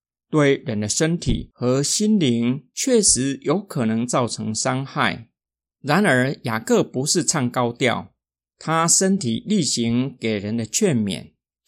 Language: Chinese